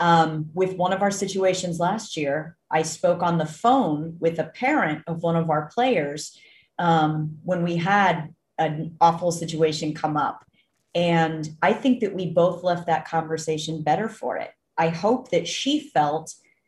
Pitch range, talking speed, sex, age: 160-220 Hz, 170 wpm, female, 30-49